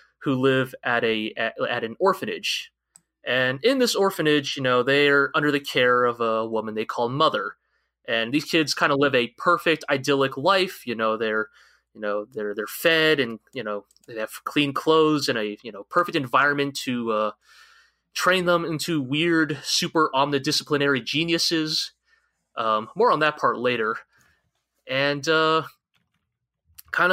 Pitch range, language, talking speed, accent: 120-165 Hz, English, 165 wpm, American